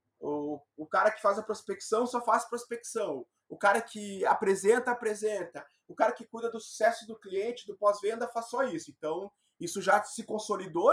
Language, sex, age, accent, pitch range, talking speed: Portuguese, male, 20-39, Brazilian, 175-225 Hz, 180 wpm